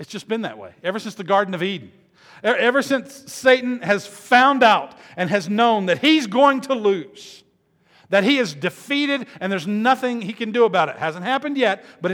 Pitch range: 130-200 Hz